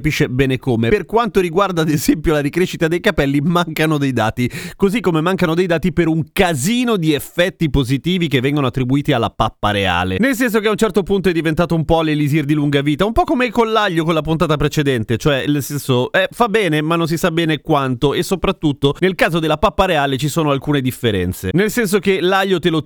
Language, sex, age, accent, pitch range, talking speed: Italian, male, 30-49, native, 140-180 Hz, 220 wpm